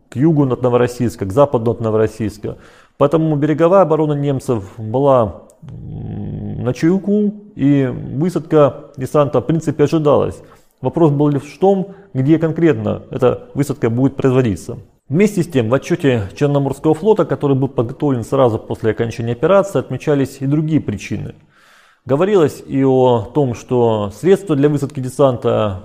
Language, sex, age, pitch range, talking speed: Russian, male, 30-49, 120-145 Hz, 135 wpm